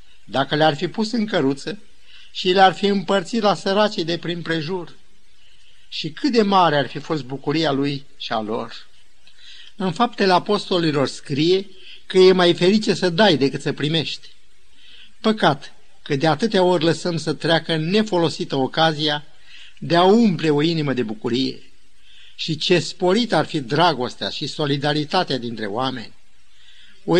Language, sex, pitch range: Romanian, male, 145-190 Hz